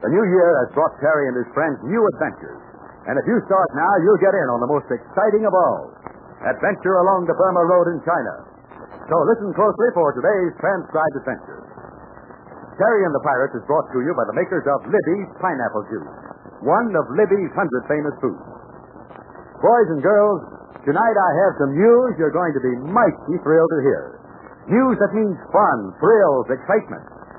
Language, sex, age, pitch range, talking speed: English, male, 60-79, 165-225 Hz, 180 wpm